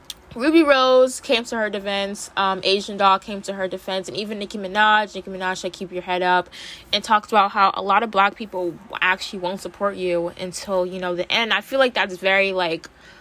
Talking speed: 220 wpm